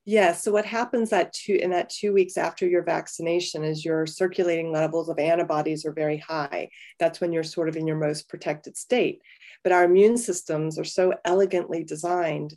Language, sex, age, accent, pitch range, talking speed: English, female, 40-59, American, 160-185 Hz, 180 wpm